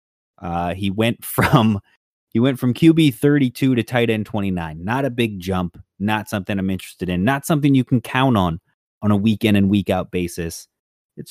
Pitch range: 105-160 Hz